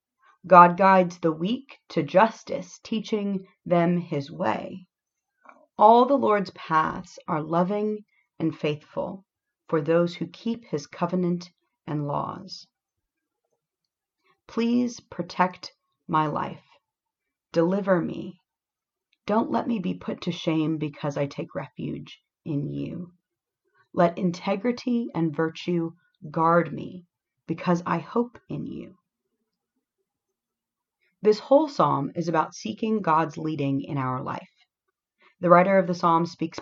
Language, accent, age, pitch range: English, American, 40-59, 155-195 Hz